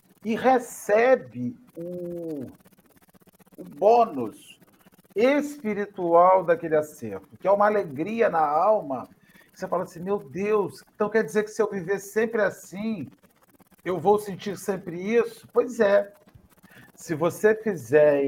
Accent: Brazilian